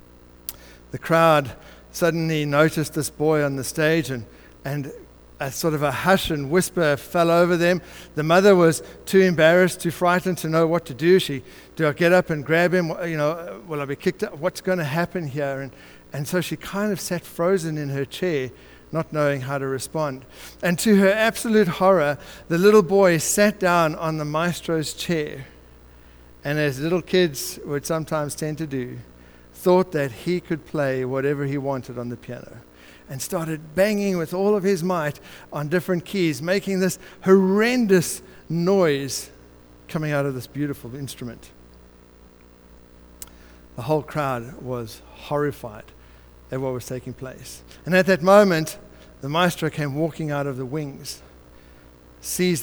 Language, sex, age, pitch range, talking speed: English, male, 60-79, 125-175 Hz, 165 wpm